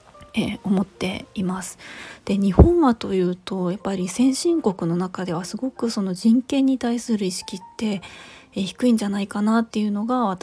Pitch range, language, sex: 185-240 Hz, Japanese, female